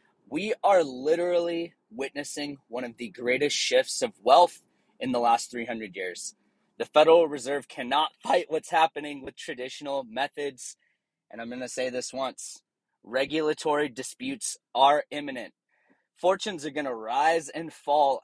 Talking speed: 145 wpm